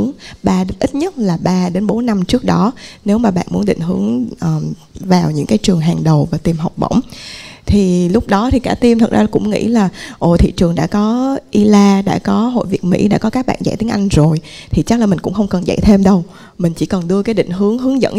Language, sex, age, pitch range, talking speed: Vietnamese, female, 20-39, 175-215 Hz, 250 wpm